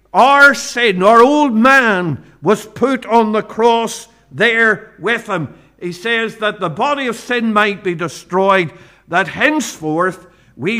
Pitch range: 170-230 Hz